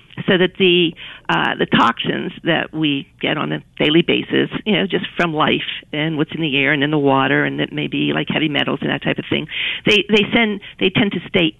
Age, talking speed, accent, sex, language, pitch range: 50-69, 235 wpm, American, female, English, 150-195 Hz